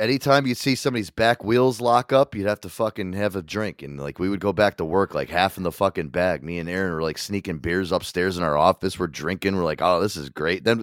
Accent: American